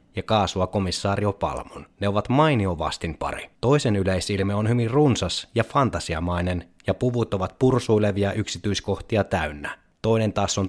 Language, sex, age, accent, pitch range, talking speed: Finnish, male, 20-39, native, 90-115 Hz, 135 wpm